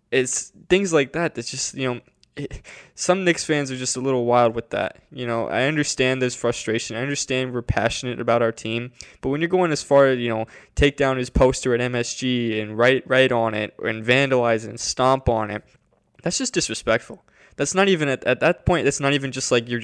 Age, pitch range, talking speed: 20-39, 120-150 Hz, 225 wpm